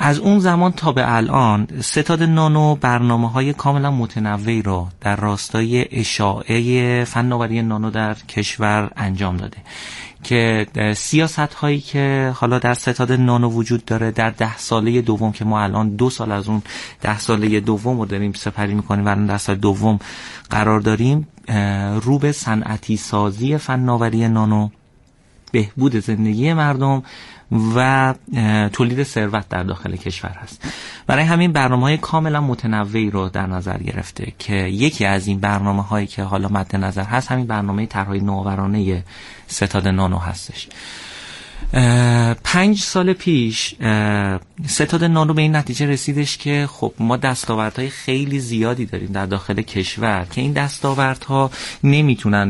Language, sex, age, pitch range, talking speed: Persian, male, 30-49, 105-135 Hz, 145 wpm